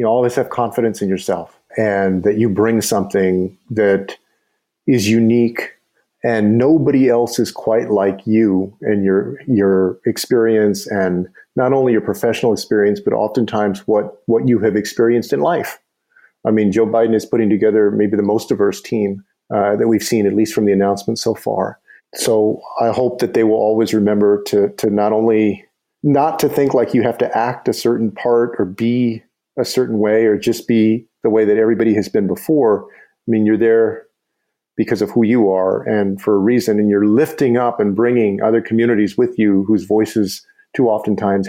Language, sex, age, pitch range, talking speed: English, male, 40-59, 105-120 Hz, 185 wpm